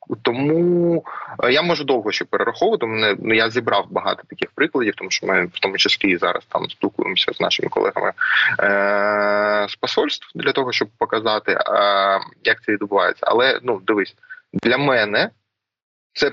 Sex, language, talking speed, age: male, Ukrainian, 150 wpm, 20-39